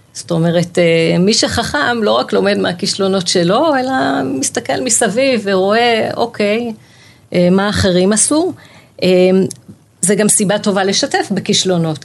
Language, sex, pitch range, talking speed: Hebrew, female, 170-215 Hz, 115 wpm